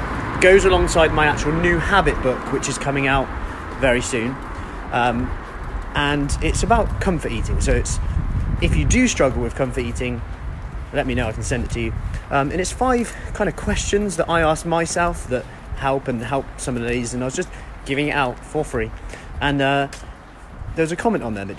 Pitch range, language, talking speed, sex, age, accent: 120-170 Hz, English, 200 wpm, male, 30-49, British